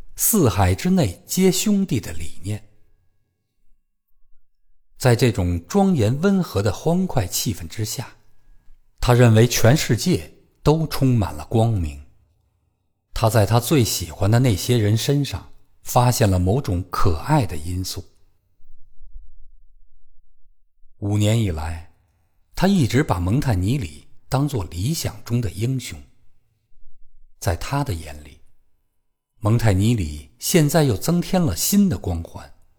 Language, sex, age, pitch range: Chinese, male, 50-69, 90-125 Hz